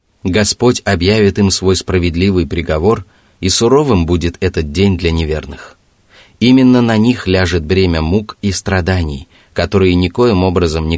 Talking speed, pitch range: 135 wpm, 85-105 Hz